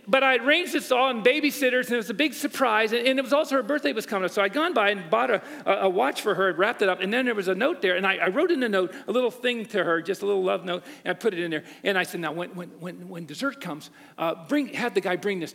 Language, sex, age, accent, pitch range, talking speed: English, male, 50-69, American, 175-270 Hz, 315 wpm